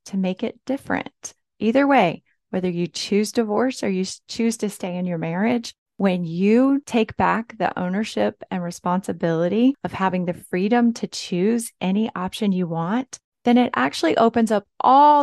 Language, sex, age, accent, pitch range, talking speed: English, female, 30-49, American, 185-240 Hz, 165 wpm